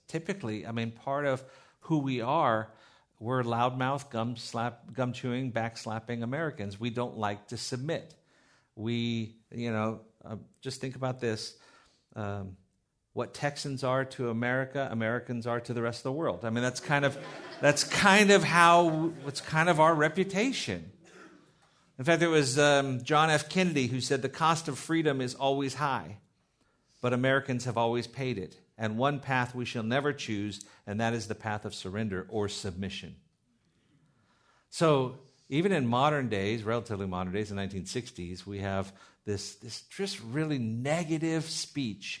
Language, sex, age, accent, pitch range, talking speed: English, male, 50-69, American, 110-145 Hz, 160 wpm